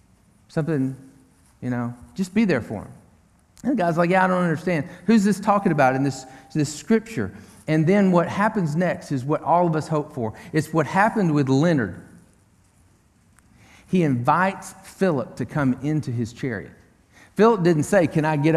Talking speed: 180 wpm